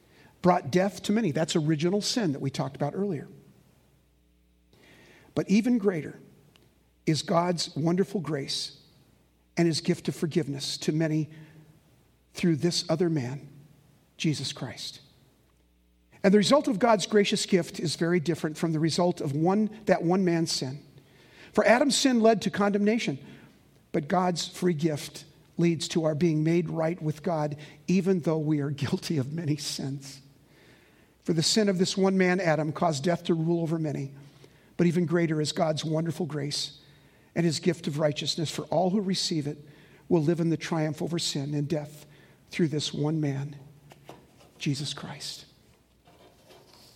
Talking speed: 155 wpm